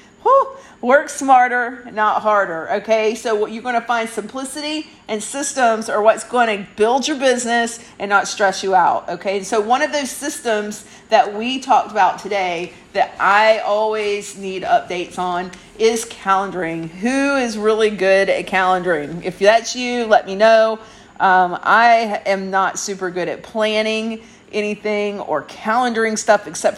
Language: English